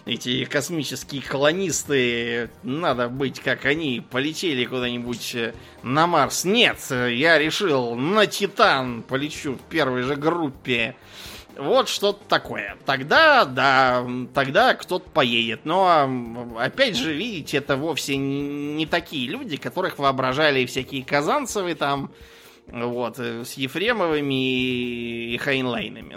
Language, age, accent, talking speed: Russian, 20-39, native, 110 wpm